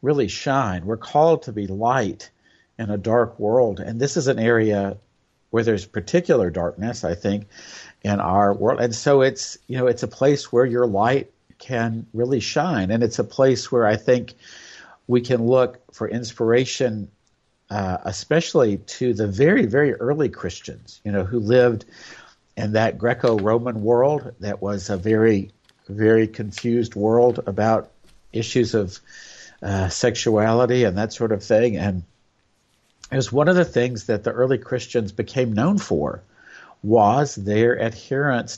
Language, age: English, 50-69